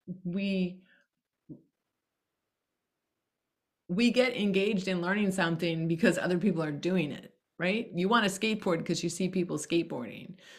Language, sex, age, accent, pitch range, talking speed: English, female, 30-49, American, 165-200 Hz, 130 wpm